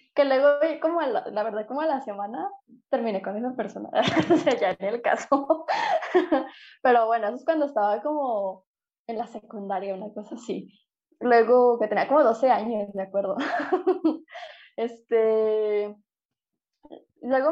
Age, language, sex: 10-29, Spanish, female